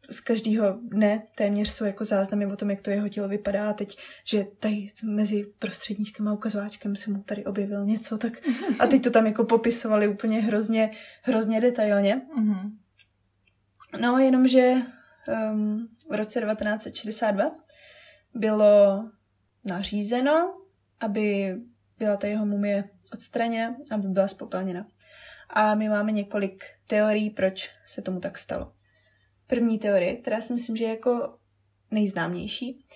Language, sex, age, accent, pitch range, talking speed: Czech, female, 20-39, native, 200-225 Hz, 135 wpm